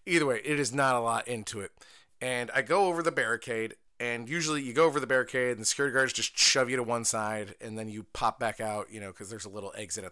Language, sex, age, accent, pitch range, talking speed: English, male, 30-49, American, 120-160 Hz, 275 wpm